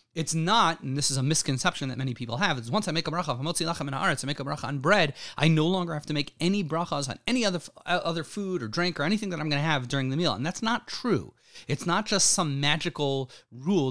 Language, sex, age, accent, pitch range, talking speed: English, male, 30-49, American, 135-175 Hz, 250 wpm